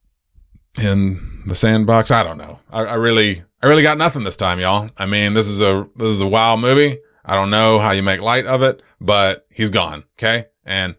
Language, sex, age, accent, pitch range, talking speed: English, male, 30-49, American, 85-110 Hz, 220 wpm